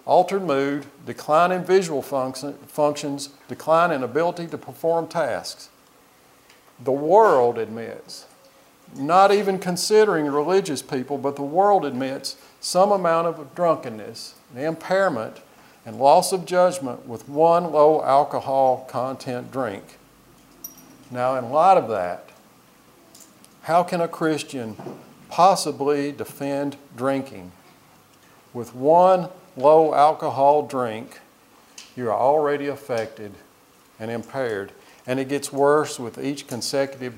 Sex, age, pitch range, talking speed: male, 50-69, 130-165 Hz, 110 wpm